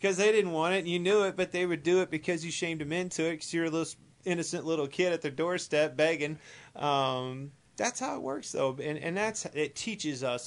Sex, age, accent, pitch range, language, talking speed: male, 30-49, American, 115-150 Hz, English, 240 wpm